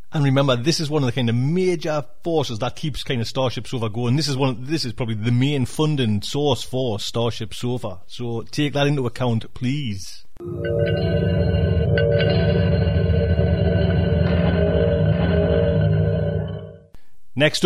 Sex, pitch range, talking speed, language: male, 115-160 Hz, 130 wpm, English